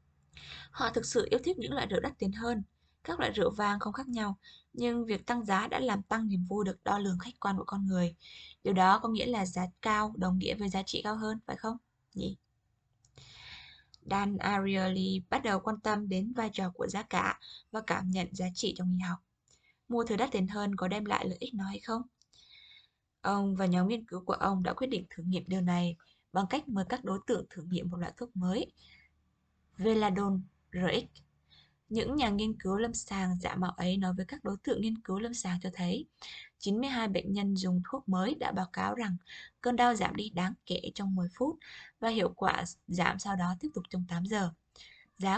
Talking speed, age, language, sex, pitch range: 215 wpm, 20-39, Vietnamese, female, 180-225 Hz